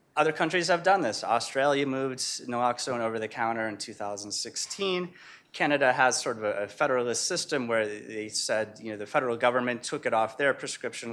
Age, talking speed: 30-49, 165 wpm